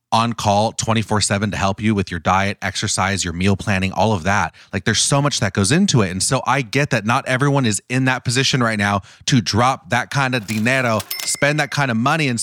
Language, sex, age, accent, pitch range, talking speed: English, male, 30-49, American, 100-135 Hz, 235 wpm